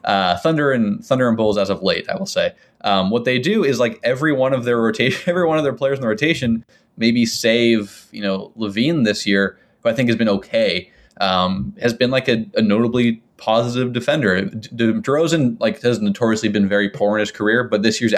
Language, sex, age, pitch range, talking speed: English, male, 20-39, 100-120 Hz, 225 wpm